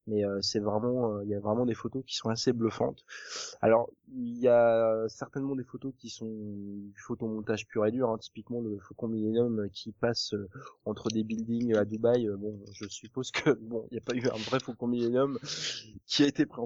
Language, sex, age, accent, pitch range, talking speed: French, male, 20-39, French, 105-125 Hz, 195 wpm